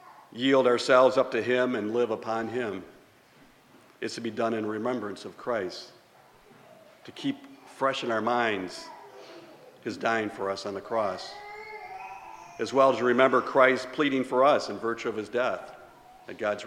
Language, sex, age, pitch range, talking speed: English, male, 50-69, 115-150 Hz, 165 wpm